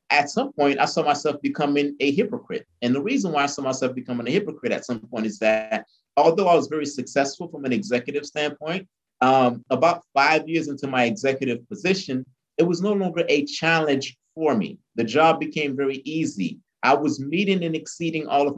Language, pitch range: English, 125-155 Hz